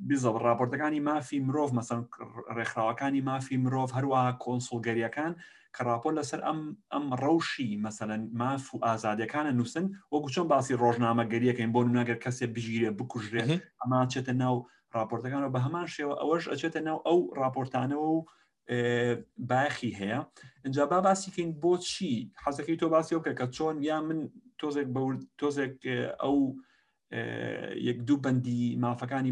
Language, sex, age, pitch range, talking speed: Persian, male, 30-49, 120-150 Hz, 130 wpm